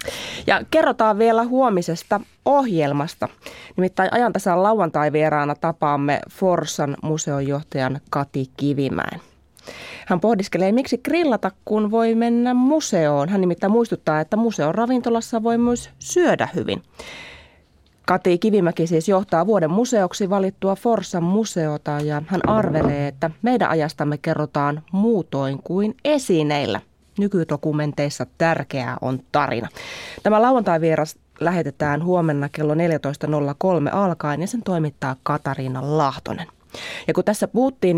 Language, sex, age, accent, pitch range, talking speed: Finnish, female, 30-49, native, 145-205 Hz, 110 wpm